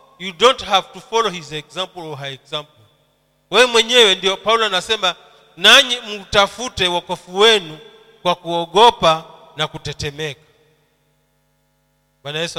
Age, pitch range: 40-59, 135-195 Hz